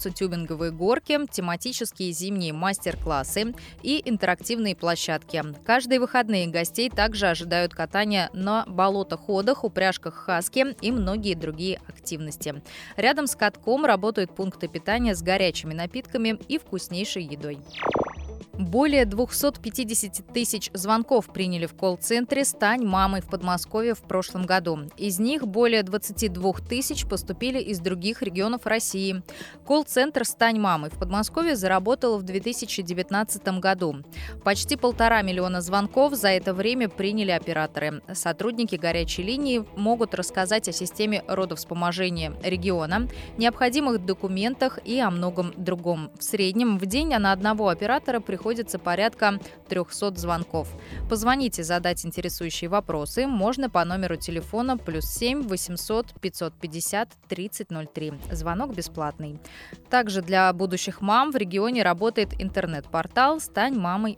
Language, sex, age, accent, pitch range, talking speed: Russian, female, 20-39, native, 175-230 Hz, 120 wpm